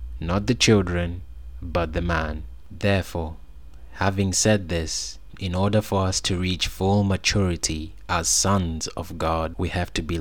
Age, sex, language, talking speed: 20-39, male, English, 155 wpm